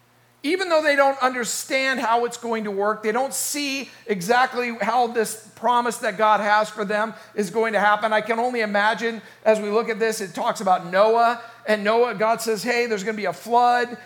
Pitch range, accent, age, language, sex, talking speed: 205-245 Hz, American, 50-69, English, male, 215 wpm